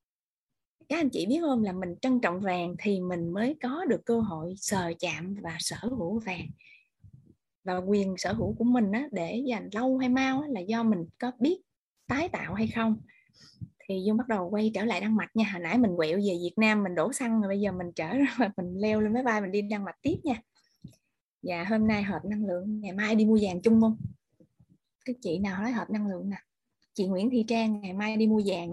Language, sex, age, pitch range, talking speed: Vietnamese, female, 20-39, 185-230 Hz, 230 wpm